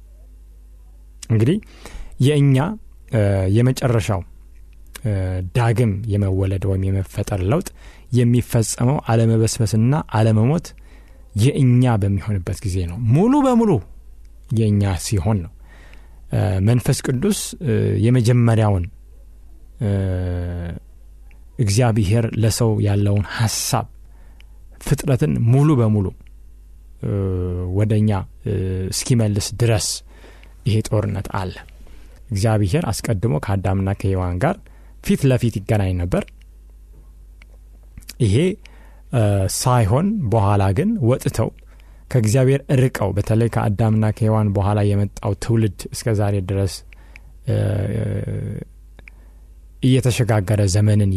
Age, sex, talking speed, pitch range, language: 30-49, male, 55 wpm, 90-115 Hz, Amharic